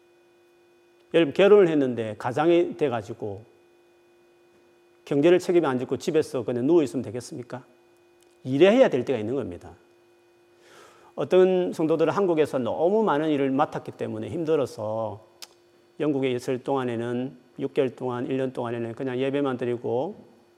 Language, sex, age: Korean, male, 40-59